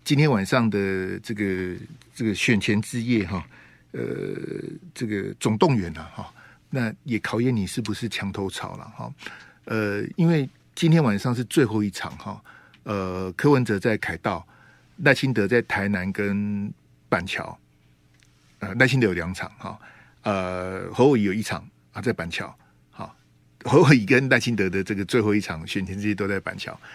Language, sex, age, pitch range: Chinese, male, 50-69, 95-120 Hz